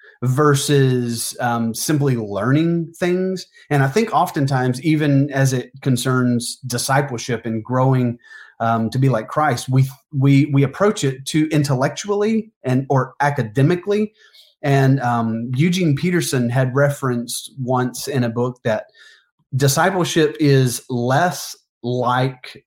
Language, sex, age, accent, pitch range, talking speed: English, male, 30-49, American, 120-145 Hz, 120 wpm